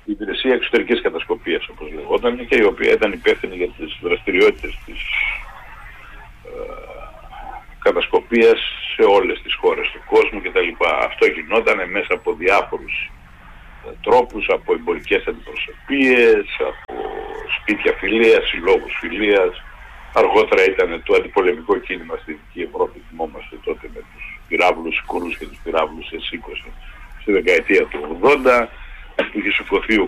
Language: Greek